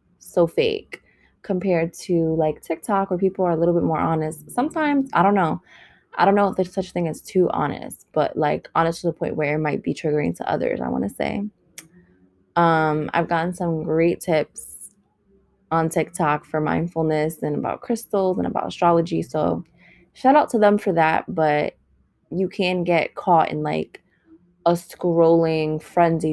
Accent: American